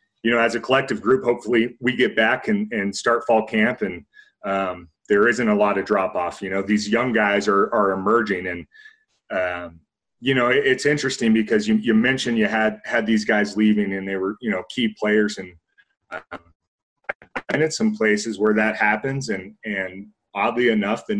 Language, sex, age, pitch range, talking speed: English, male, 30-49, 95-115 Hz, 195 wpm